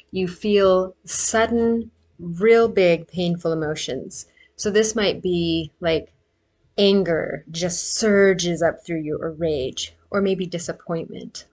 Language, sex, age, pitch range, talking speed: English, female, 30-49, 165-205 Hz, 120 wpm